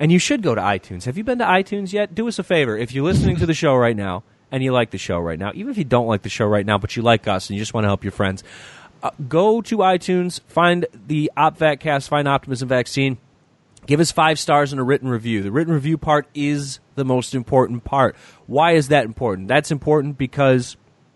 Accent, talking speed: American, 245 wpm